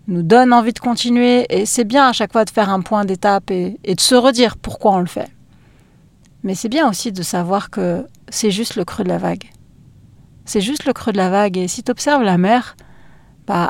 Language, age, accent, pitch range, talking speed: French, 40-59, French, 205-250 Hz, 230 wpm